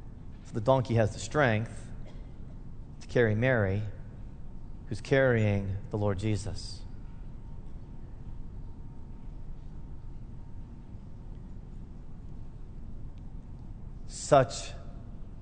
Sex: male